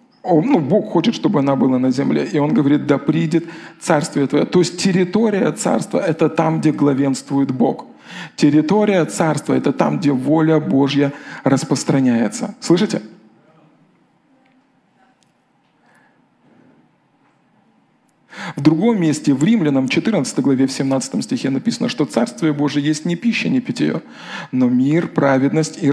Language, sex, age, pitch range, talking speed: Russian, male, 40-59, 145-220 Hz, 135 wpm